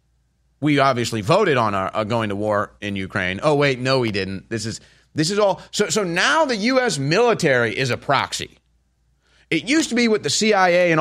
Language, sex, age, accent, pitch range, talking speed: English, male, 30-49, American, 110-175 Hz, 205 wpm